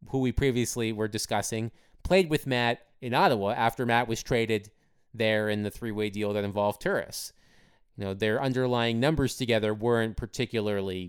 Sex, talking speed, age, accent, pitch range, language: male, 160 wpm, 20-39, American, 115-140 Hz, English